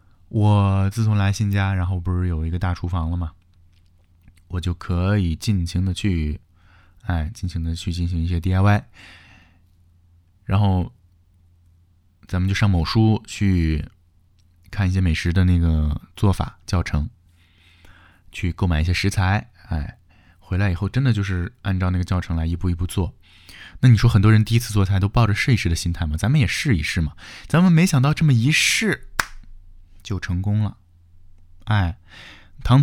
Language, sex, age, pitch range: Chinese, male, 20-39, 85-100 Hz